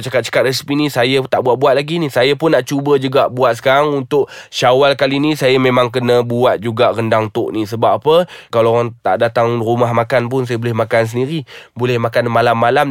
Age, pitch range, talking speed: 20-39, 130-190 Hz, 200 wpm